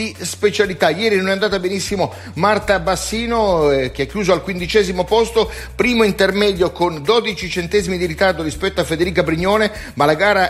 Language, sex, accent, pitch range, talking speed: Italian, male, native, 175-210 Hz, 165 wpm